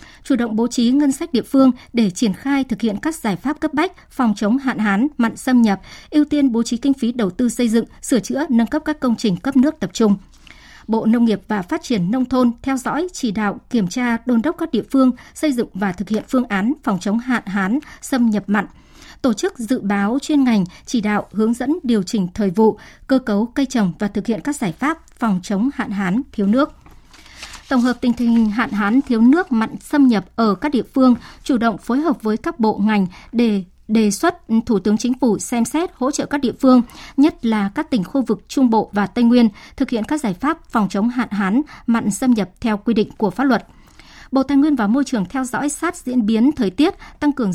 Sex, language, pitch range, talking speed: male, Vietnamese, 215-270 Hz, 240 wpm